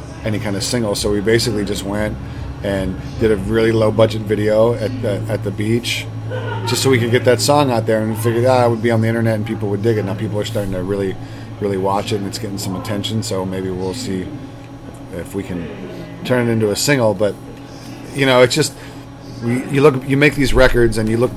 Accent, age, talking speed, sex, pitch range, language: American, 30-49, 235 wpm, male, 100-120 Hz, English